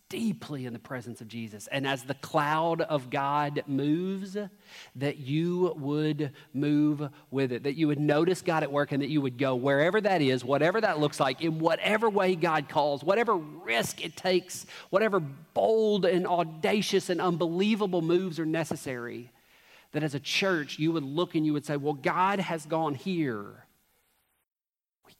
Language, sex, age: English, male, 40-59